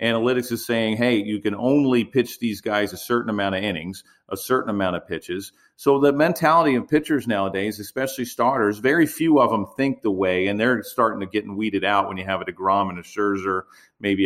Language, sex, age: English, male, 40-59